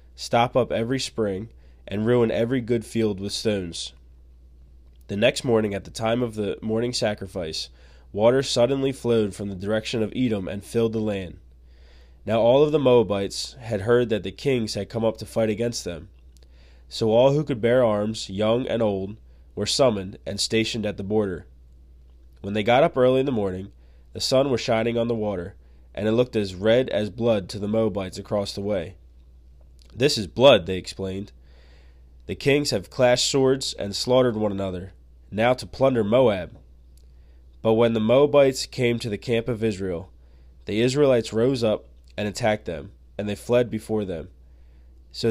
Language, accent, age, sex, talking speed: English, American, 20-39, male, 180 wpm